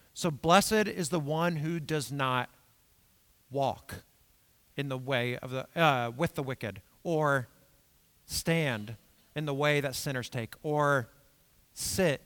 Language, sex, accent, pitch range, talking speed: English, male, American, 115-165 Hz, 135 wpm